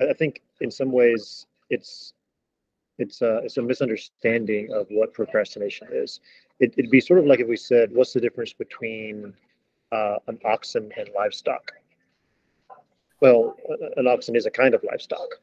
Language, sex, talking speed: English, male, 160 wpm